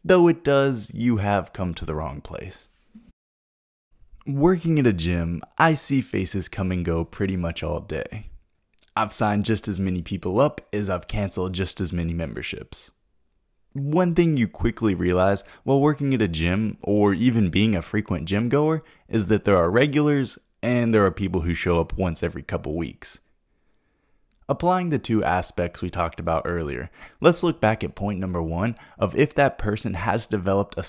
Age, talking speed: 20-39, 180 wpm